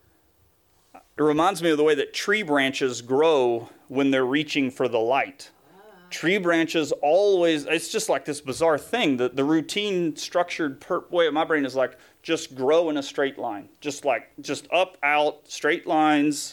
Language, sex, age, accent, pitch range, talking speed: English, male, 30-49, American, 140-190 Hz, 175 wpm